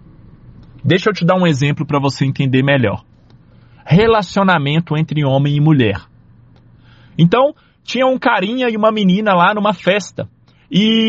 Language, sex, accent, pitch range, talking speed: Portuguese, male, Brazilian, 160-220 Hz, 140 wpm